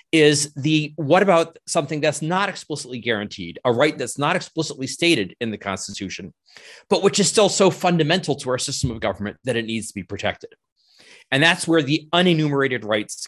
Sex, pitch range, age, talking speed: male, 120-165 Hz, 30-49, 185 wpm